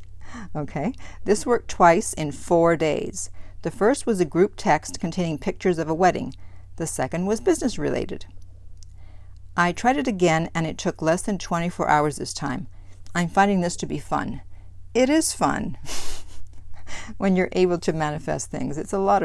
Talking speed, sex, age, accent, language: 170 wpm, female, 50-69, American, English